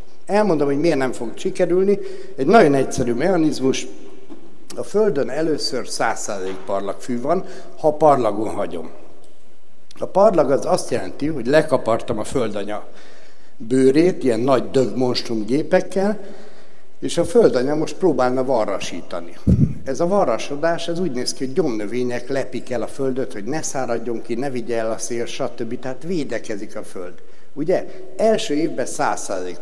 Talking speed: 140 wpm